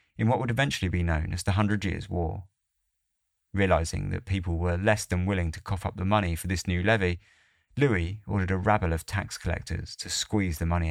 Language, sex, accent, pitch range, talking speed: English, male, British, 85-105 Hz, 210 wpm